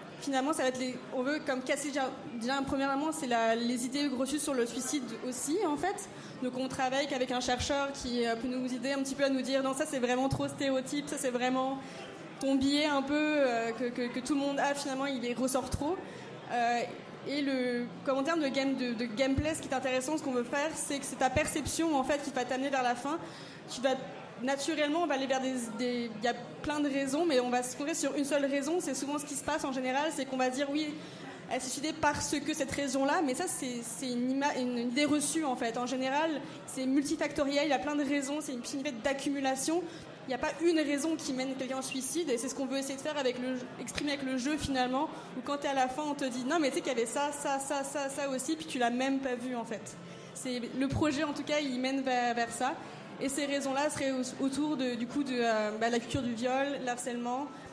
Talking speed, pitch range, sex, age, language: 260 wpm, 255-290 Hz, female, 20-39, French